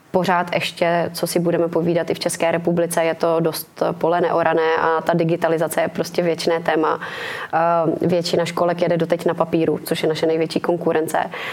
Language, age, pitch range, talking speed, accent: Czech, 20-39, 165-175 Hz, 170 wpm, native